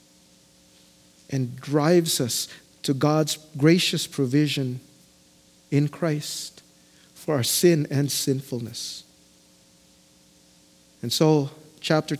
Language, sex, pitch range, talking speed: English, male, 140-185 Hz, 85 wpm